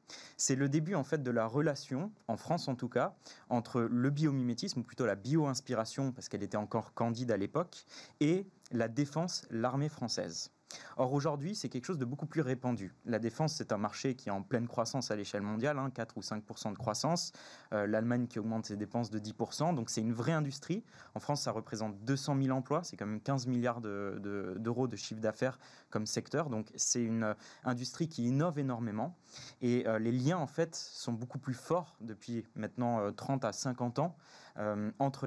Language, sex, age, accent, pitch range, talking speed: French, male, 20-39, French, 110-140 Hz, 200 wpm